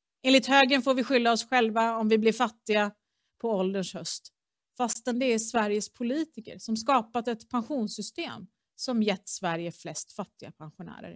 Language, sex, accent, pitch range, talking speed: Swedish, female, native, 185-235 Hz, 155 wpm